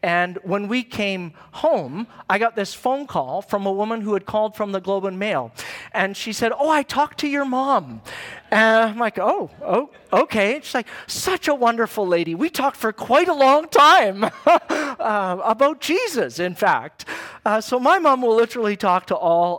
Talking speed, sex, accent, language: 195 wpm, male, American, English